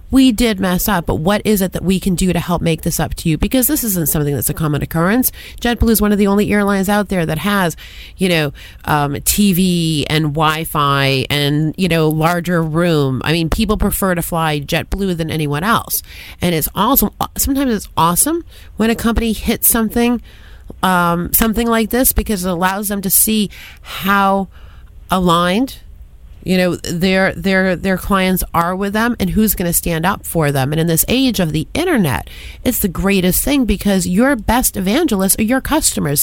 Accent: American